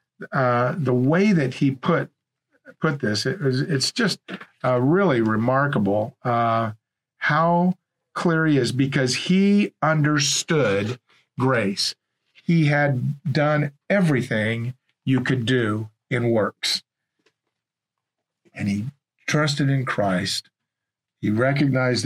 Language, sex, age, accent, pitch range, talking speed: English, male, 50-69, American, 115-150 Hz, 105 wpm